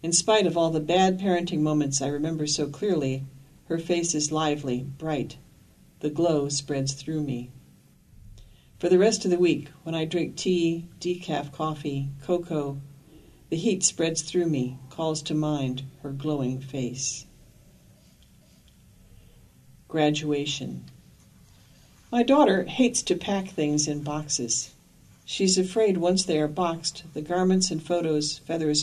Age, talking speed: 60-79, 135 wpm